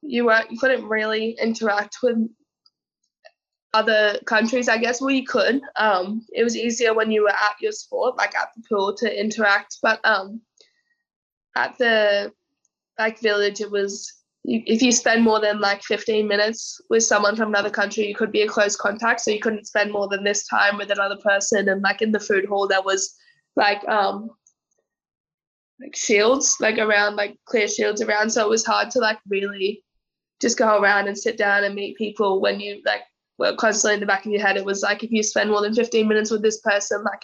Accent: Australian